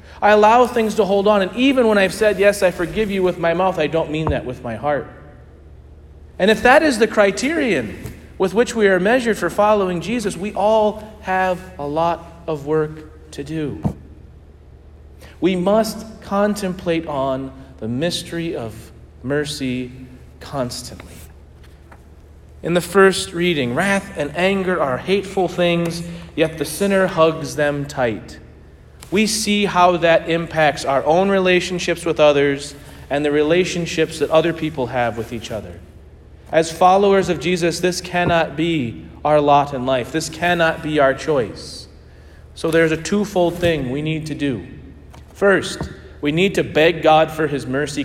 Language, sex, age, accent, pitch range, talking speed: English, male, 40-59, American, 125-185 Hz, 160 wpm